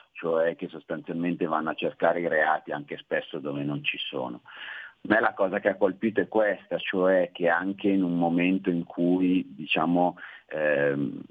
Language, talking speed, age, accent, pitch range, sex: Italian, 175 wpm, 40-59, native, 85-95 Hz, male